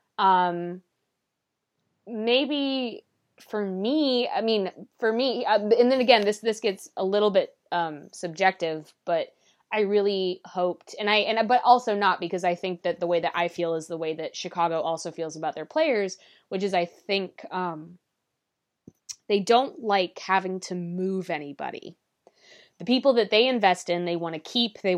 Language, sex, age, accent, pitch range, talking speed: English, female, 20-39, American, 175-210 Hz, 175 wpm